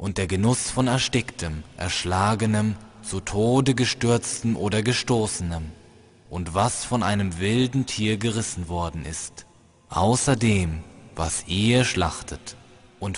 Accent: German